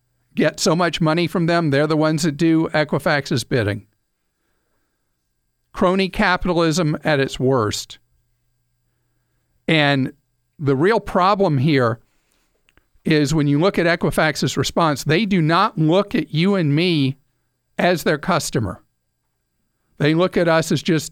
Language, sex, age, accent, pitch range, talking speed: English, male, 50-69, American, 135-180 Hz, 135 wpm